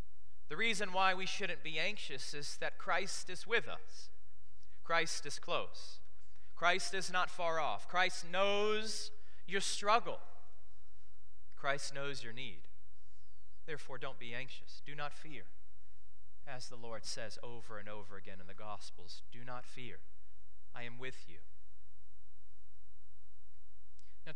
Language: English